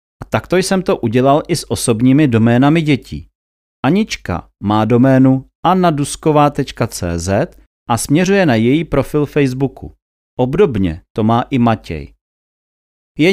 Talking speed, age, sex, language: 115 wpm, 40-59, male, Czech